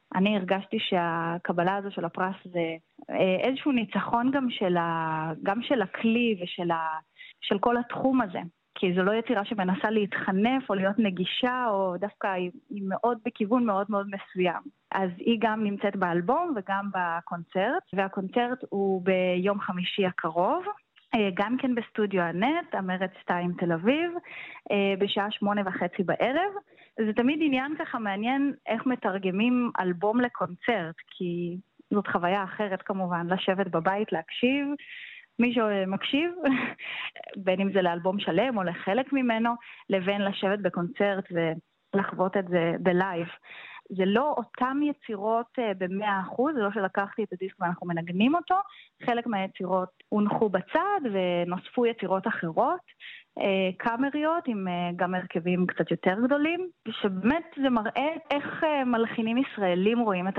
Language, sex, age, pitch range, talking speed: Hebrew, female, 30-49, 185-240 Hz, 130 wpm